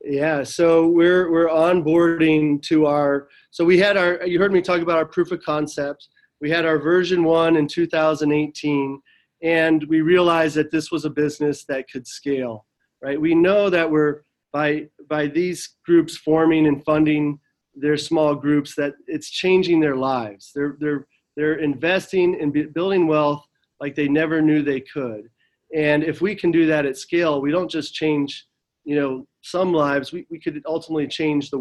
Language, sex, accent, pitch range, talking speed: English, male, American, 145-165 Hz, 180 wpm